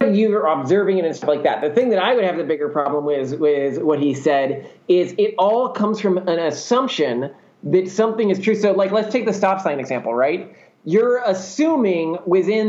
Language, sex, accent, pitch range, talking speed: English, male, American, 150-195 Hz, 215 wpm